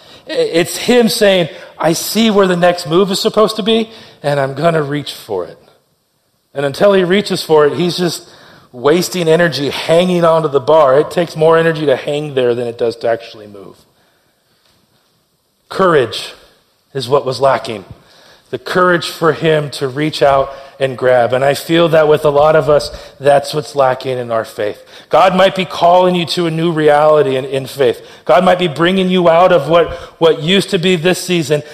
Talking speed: 195 wpm